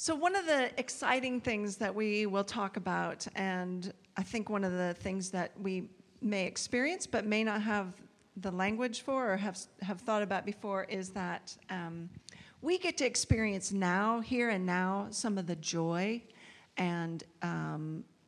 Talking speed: 170 wpm